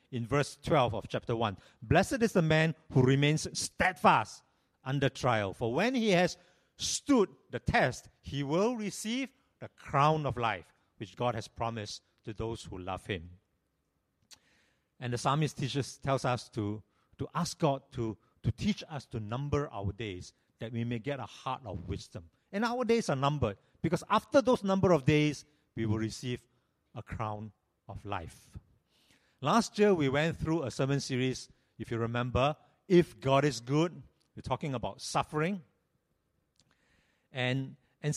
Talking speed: 160 wpm